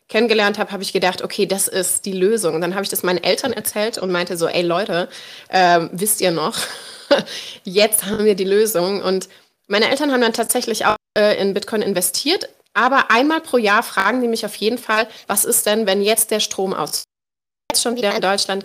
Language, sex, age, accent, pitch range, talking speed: German, female, 30-49, German, 185-225 Hz, 210 wpm